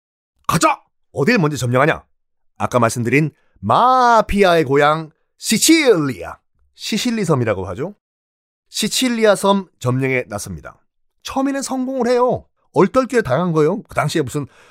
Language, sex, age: Korean, male, 30-49